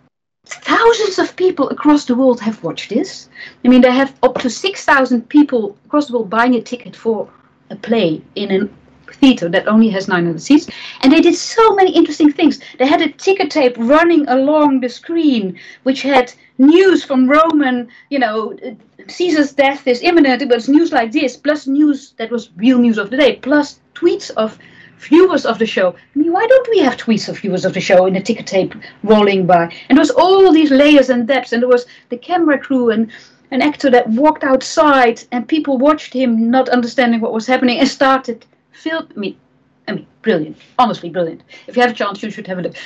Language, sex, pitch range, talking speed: English, female, 220-295 Hz, 205 wpm